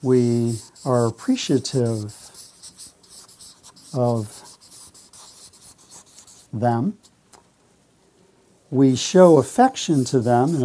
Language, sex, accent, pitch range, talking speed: English, male, American, 120-140 Hz, 60 wpm